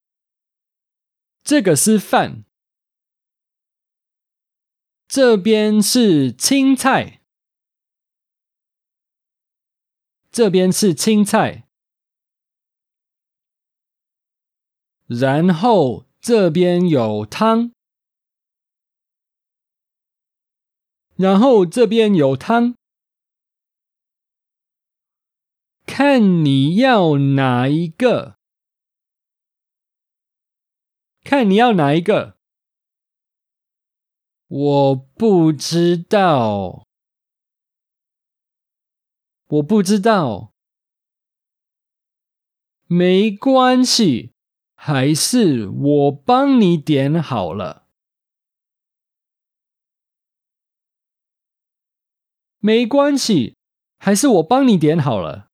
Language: English